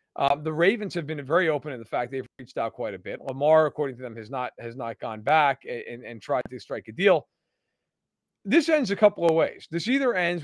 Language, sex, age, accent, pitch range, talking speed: English, male, 40-59, American, 150-205 Hz, 240 wpm